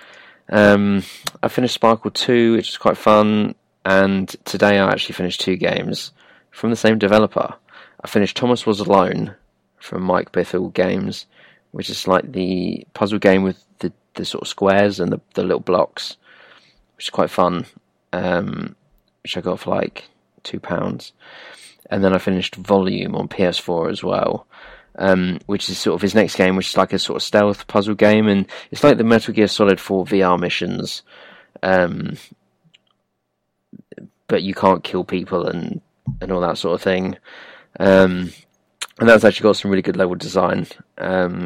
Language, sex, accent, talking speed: English, male, British, 170 wpm